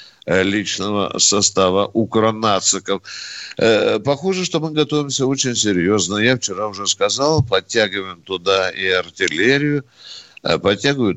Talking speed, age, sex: 95 wpm, 60-79, male